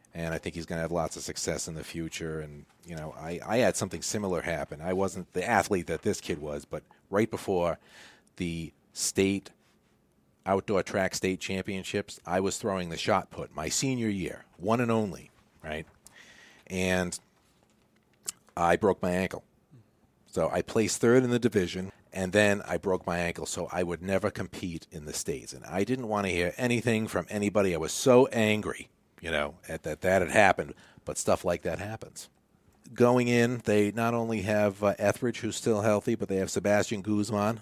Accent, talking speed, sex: American, 190 wpm, male